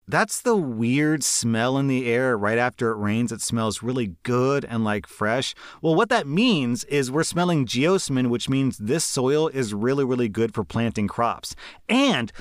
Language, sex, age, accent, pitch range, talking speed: English, male, 30-49, American, 125-195 Hz, 185 wpm